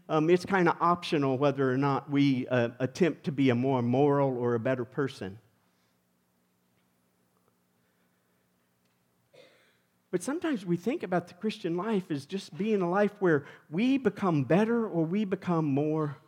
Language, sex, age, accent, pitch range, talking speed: English, male, 50-69, American, 120-180 Hz, 150 wpm